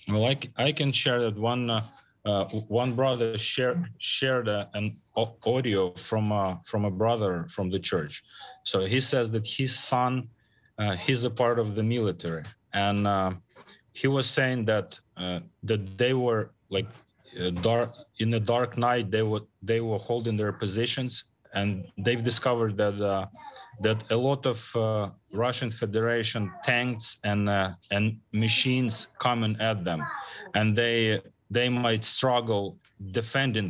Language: English